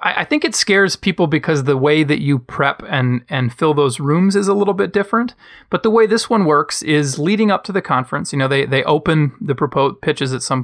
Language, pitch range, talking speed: English, 130-175 Hz, 245 wpm